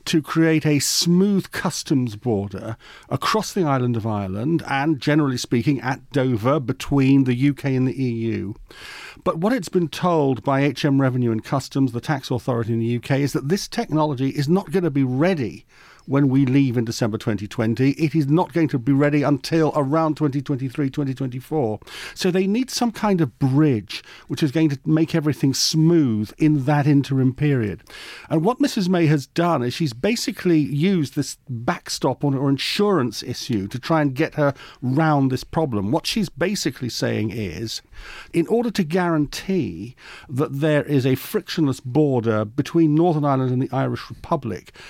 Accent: British